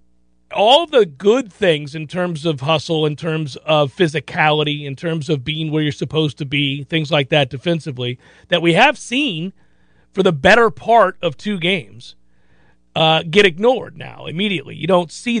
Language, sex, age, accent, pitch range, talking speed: English, male, 40-59, American, 140-200 Hz, 170 wpm